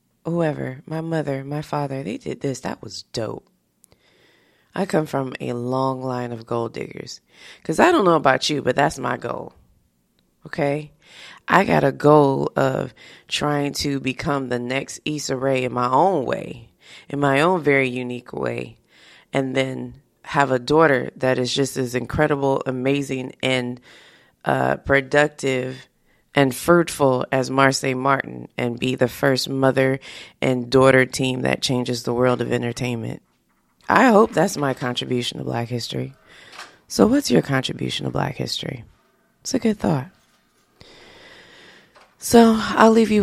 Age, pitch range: 20-39, 130-155 Hz